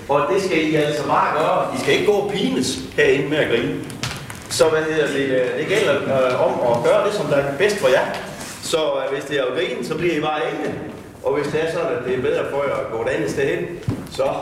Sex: male